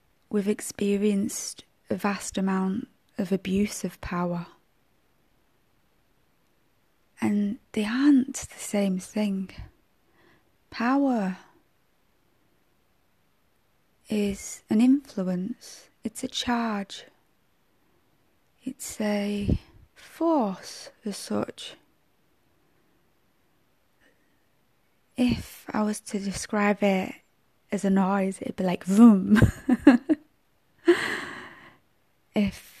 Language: English